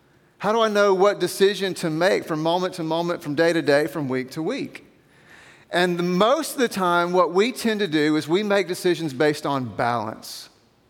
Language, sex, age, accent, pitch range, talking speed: English, male, 40-59, American, 140-190 Hz, 205 wpm